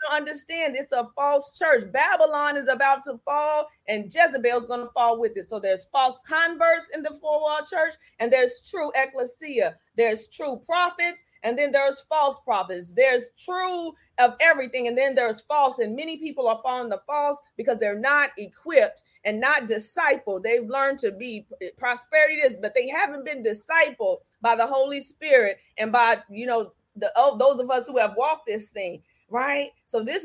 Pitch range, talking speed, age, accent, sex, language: 225-295 Hz, 185 wpm, 30-49, American, female, English